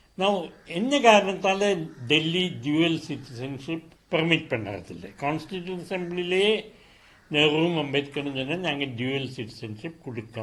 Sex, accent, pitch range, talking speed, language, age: male, native, 125-180 Hz, 100 wpm, Tamil, 60-79